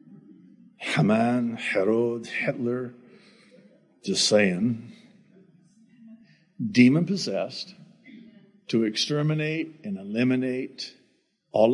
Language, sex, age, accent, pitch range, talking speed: English, male, 60-79, American, 120-185 Hz, 55 wpm